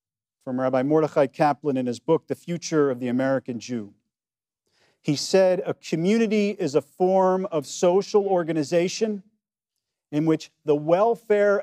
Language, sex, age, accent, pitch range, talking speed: English, male, 40-59, American, 125-175 Hz, 140 wpm